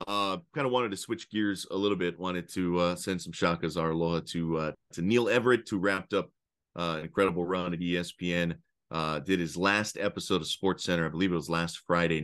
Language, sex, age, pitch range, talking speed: English, male, 30-49, 80-95 Hz, 225 wpm